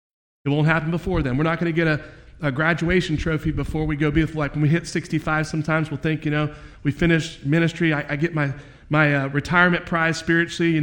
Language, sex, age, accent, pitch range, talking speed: English, male, 40-59, American, 140-170 Hz, 225 wpm